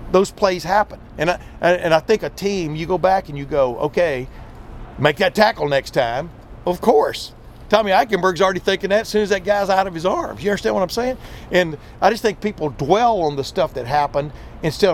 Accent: American